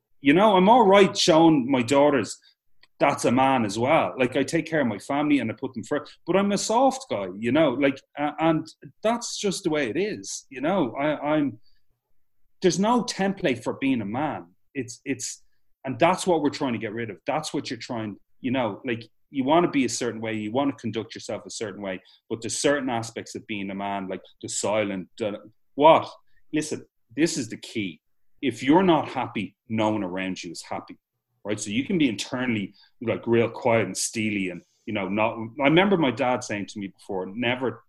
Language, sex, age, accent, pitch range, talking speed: English, male, 30-49, Irish, 105-160 Hz, 215 wpm